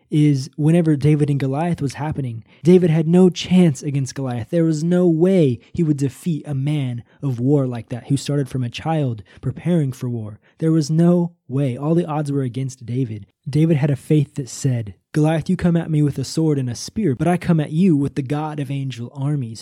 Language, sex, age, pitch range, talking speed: English, male, 20-39, 130-160 Hz, 220 wpm